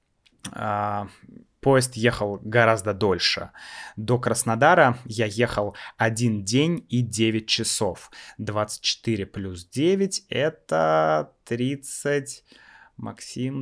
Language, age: Russian, 20-39